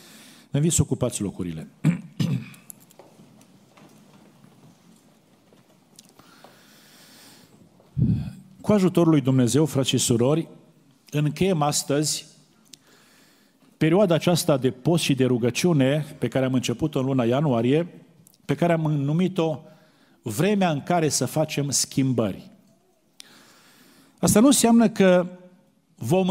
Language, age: Romanian, 50-69